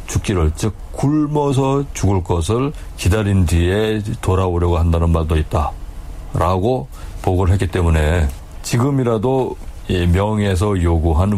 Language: Korean